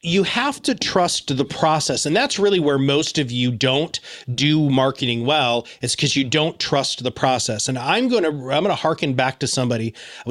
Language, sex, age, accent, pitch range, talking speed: English, male, 30-49, American, 130-180 Hz, 210 wpm